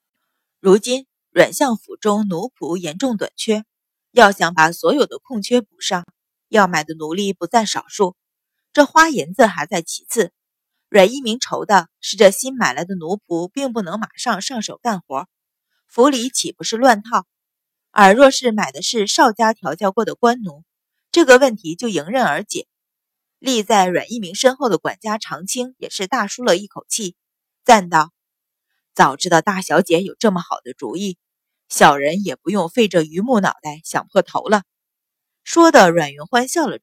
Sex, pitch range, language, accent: female, 180-240 Hz, Chinese, native